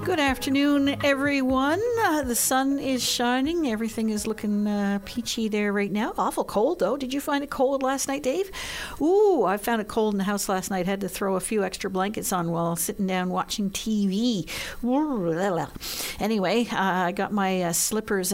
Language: English